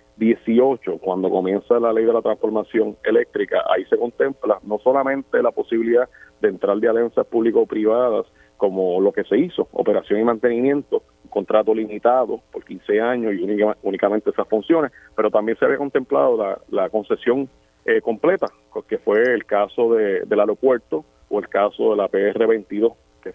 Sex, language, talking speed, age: male, Spanish, 165 wpm, 40-59